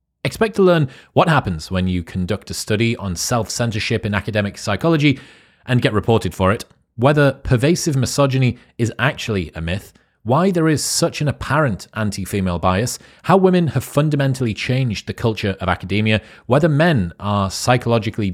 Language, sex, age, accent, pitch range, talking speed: English, male, 30-49, British, 95-130 Hz, 160 wpm